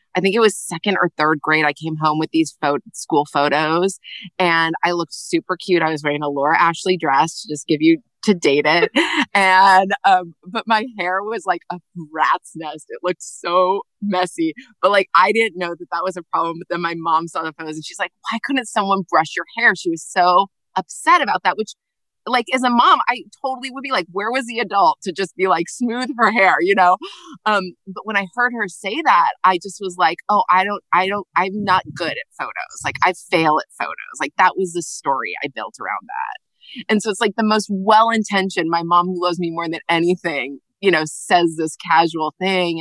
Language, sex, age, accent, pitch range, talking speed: English, female, 30-49, American, 165-220 Hz, 225 wpm